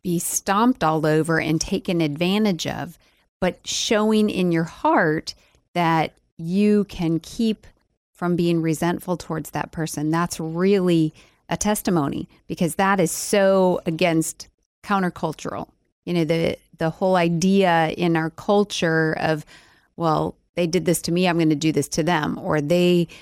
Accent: American